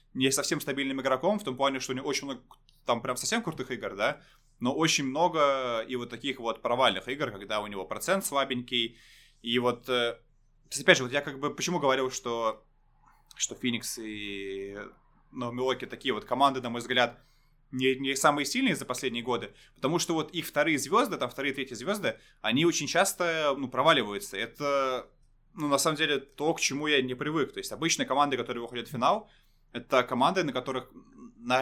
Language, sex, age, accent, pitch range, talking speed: Russian, male, 20-39, native, 120-150 Hz, 190 wpm